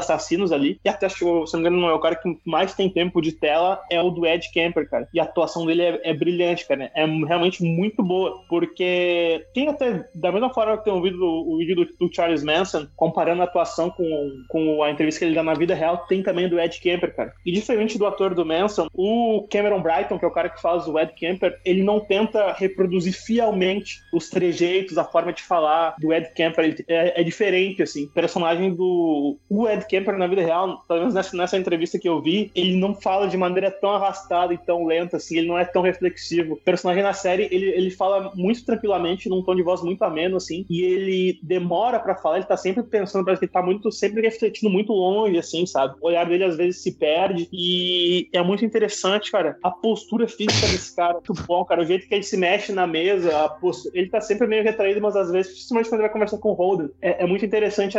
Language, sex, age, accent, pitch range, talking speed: Portuguese, male, 20-39, Brazilian, 170-195 Hz, 235 wpm